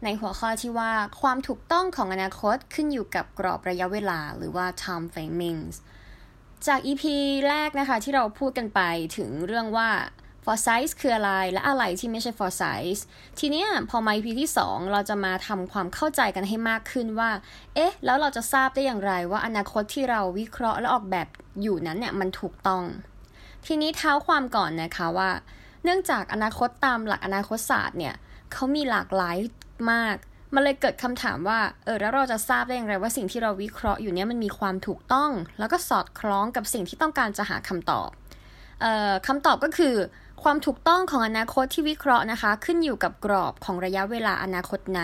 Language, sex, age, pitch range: Thai, female, 20-39, 190-265 Hz